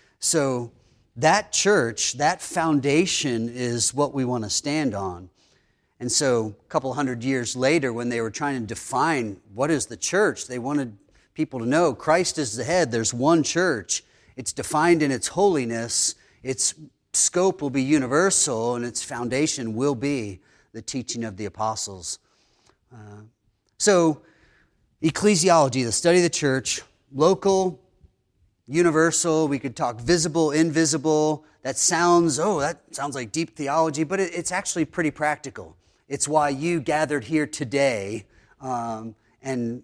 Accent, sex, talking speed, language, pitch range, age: American, male, 145 wpm, English, 120-165 Hz, 30-49